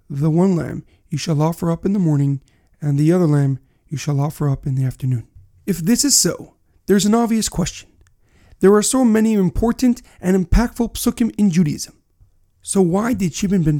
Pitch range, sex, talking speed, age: 145-210 Hz, male, 195 wpm, 40-59